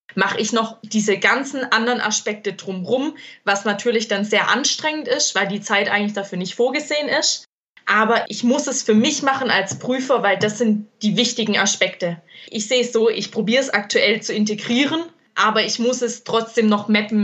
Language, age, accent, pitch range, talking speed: German, 20-39, German, 200-230 Hz, 190 wpm